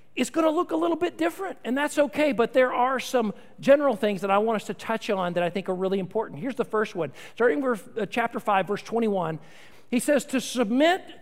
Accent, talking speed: American, 230 wpm